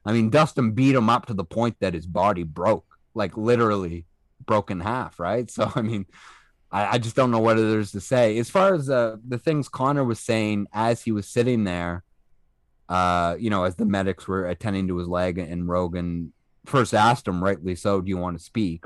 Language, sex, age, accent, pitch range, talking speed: English, male, 30-49, American, 90-120 Hz, 215 wpm